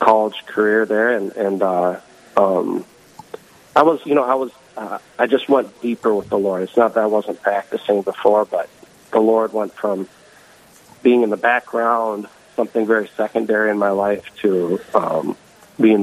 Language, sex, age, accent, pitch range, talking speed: English, male, 40-59, American, 100-120 Hz, 170 wpm